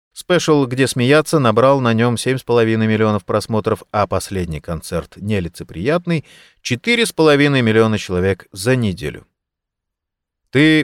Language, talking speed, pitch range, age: Russian, 105 wpm, 110-145 Hz, 30-49